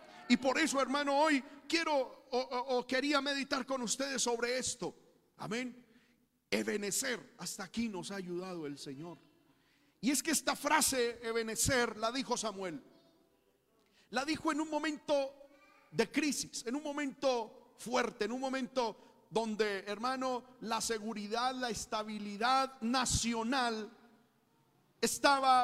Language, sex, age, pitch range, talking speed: Spanish, male, 50-69, 220-265 Hz, 130 wpm